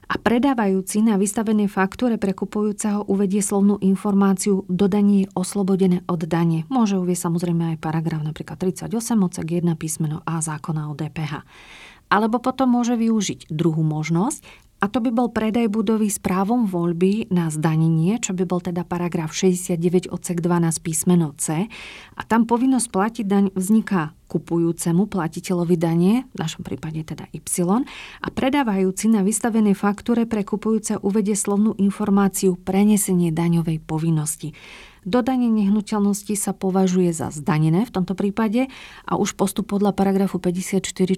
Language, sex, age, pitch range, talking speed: Slovak, female, 40-59, 170-205 Hz, 135 wpm